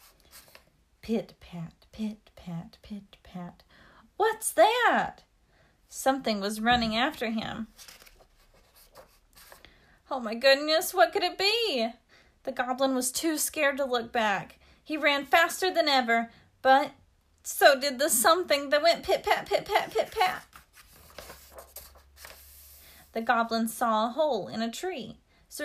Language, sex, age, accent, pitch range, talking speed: English, female, 30-49, American, 215-305 Hz, 130 wpm